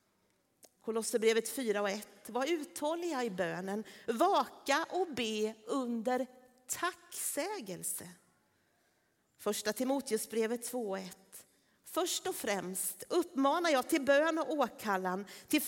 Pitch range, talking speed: 200-300 Hz, 110 wpm